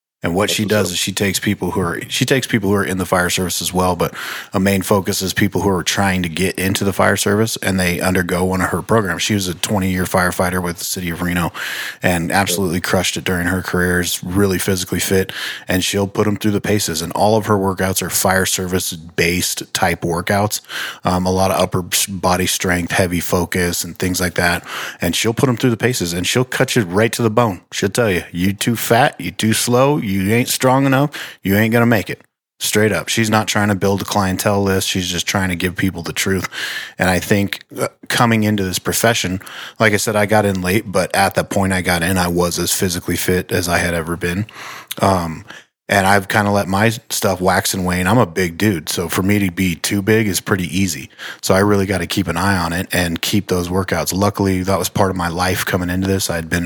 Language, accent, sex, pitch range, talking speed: English, American, male, 90-105 Hz, 245 wpm